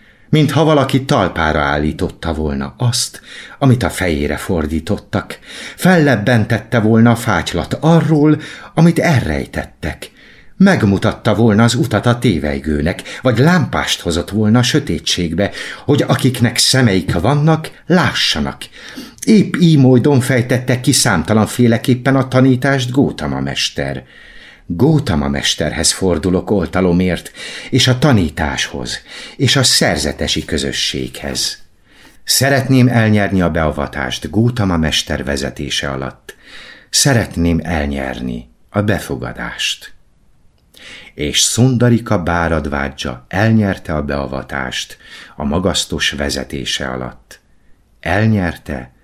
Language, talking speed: Hungarian, 95 wpm